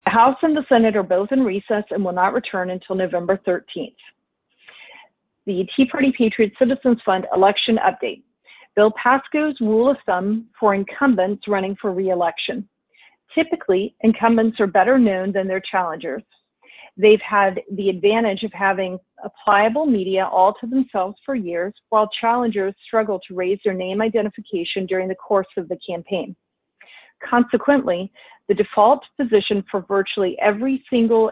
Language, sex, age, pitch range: English, female, 40-59, 190-235 Hz